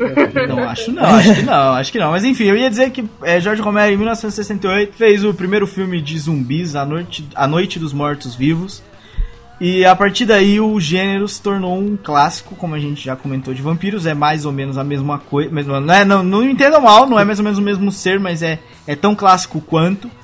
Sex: male